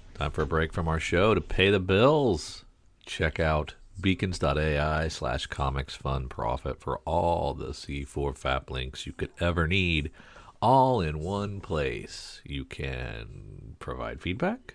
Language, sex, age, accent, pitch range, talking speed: English, male, 40-59, American, 75-100 Hz, 140 wpm